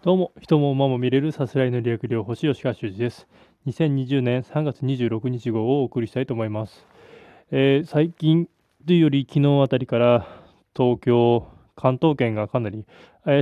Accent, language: native, Japanese